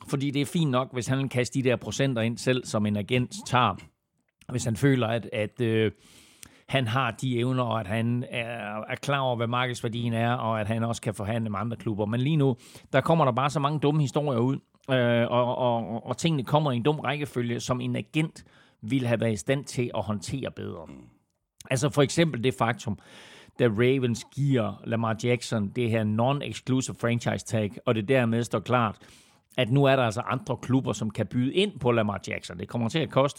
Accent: native